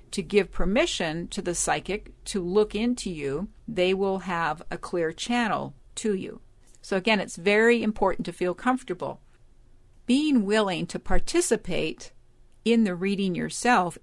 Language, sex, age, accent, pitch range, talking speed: English, female, 50-69, American, 175-230 Hz, 145 wpm